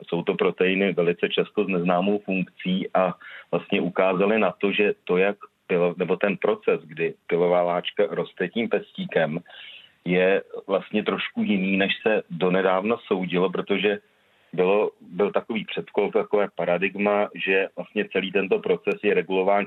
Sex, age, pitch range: male, 40-59, 90-105 Hz